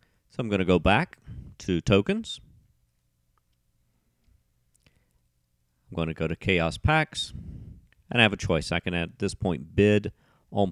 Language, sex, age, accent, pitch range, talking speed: English, male, 40-59, American, 80-100 Hz, 140 wpm